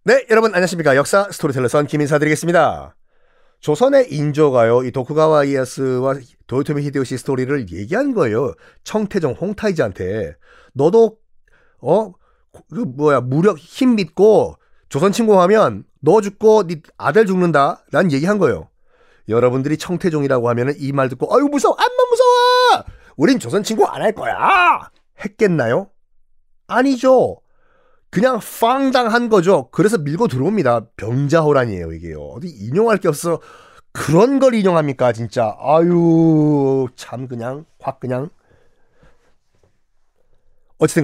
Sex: male